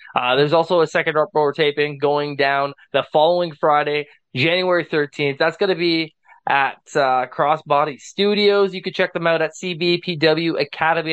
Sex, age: male, 20-39